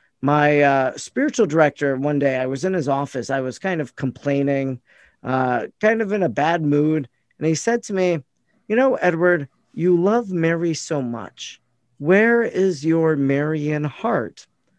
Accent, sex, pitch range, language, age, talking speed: American, male, 135-175 Hz, English, 50-69, 165 wpm